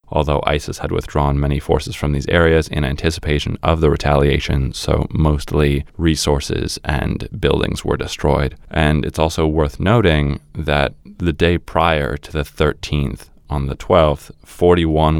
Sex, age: male, 20-39